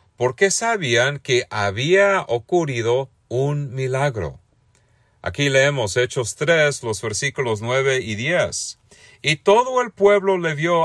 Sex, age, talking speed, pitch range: male, 40-59, 120 wpm, 115-155 Hz